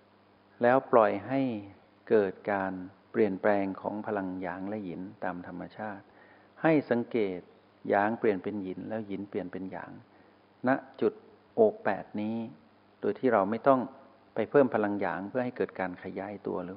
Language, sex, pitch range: Thai, male, 95-110 Hz